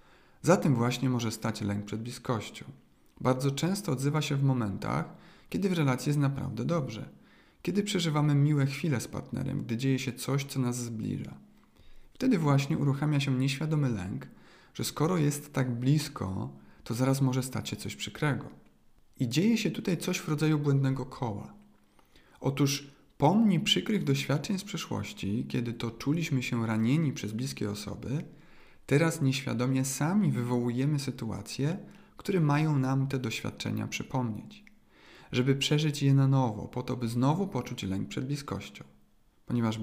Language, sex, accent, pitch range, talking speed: Polish, male, native, 115-145 Hz, 150 wpm